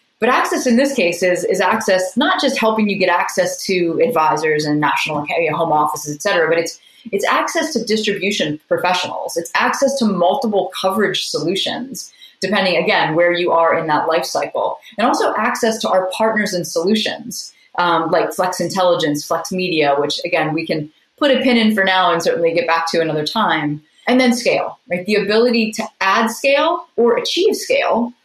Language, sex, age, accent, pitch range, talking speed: English, female, 30-49, American, 170-225 Hz, 185 wpm